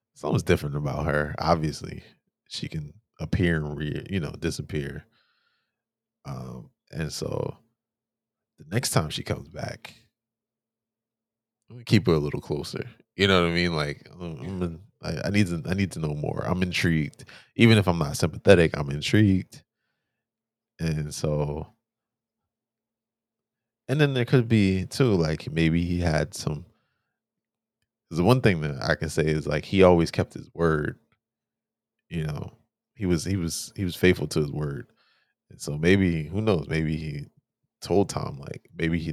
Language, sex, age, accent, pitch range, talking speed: English, male, 20-39, American, 75-110 Hz, 160 wpm